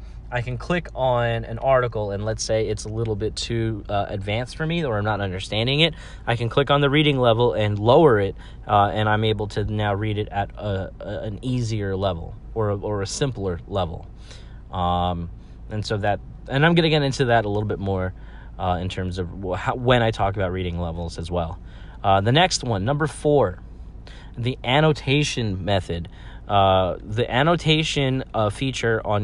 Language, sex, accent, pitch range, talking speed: English, male, American, 100-125 Hz, 195 wpm